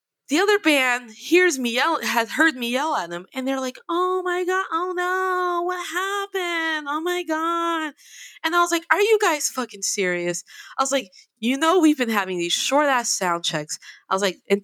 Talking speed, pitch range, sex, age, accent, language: 210 wpm, 185-300 Hz, female, 20-39, American, English